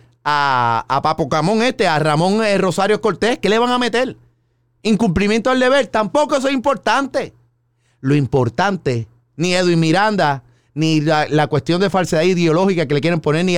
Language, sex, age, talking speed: Spanish, male, 30-49, 170 wpm